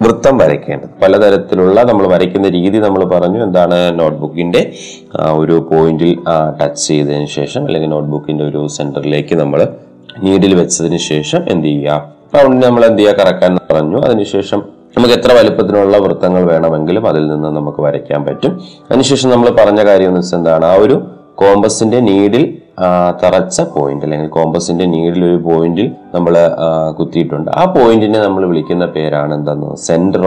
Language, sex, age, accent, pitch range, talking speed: Malayalam, male, 30-49, native, 80-105 Hz, 135 wpm